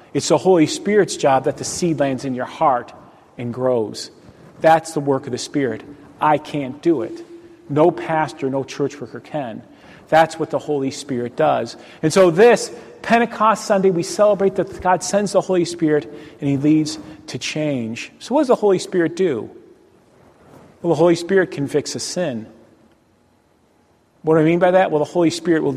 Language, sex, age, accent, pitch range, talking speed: English, male, 40-59, American, 150-230 Hz, 185 wpm